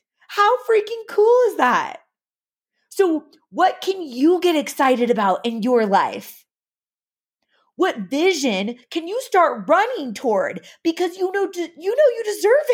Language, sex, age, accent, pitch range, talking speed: English, female, 30-49, American, 235-345 Hz, 130 wpm